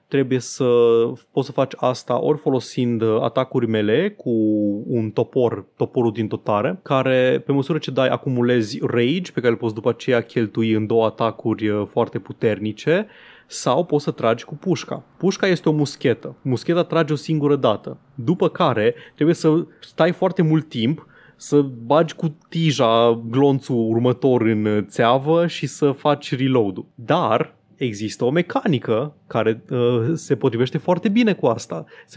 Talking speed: 155 wpm